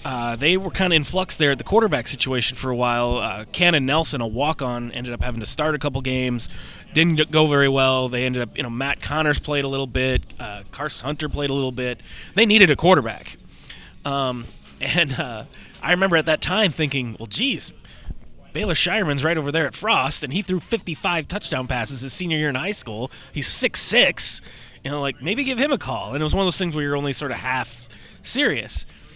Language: English